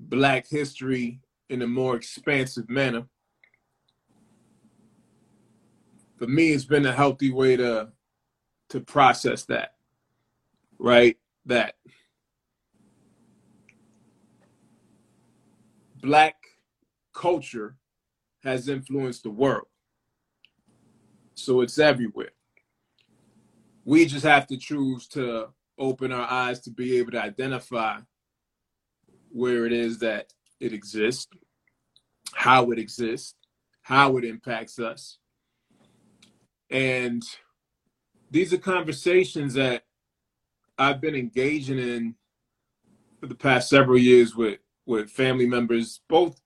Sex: male